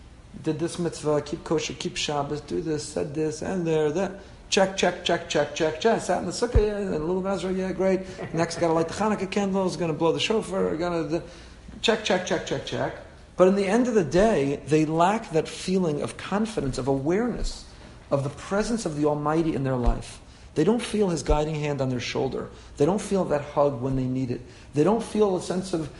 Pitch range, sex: 145-205 Hz, male